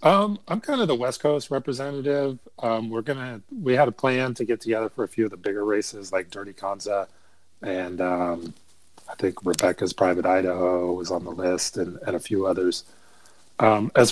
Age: 30-49